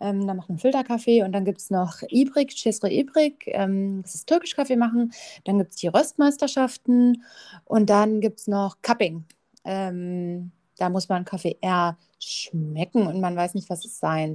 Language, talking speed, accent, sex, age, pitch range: English, 170 wpm, German, female, 30-49, 195-245 Hz